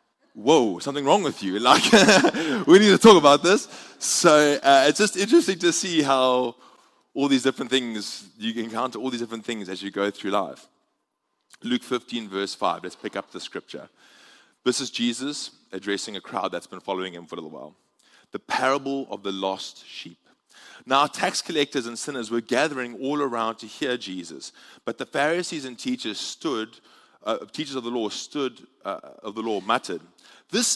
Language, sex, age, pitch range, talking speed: English, male, 20-39, 110-165 Hz, 185 wpm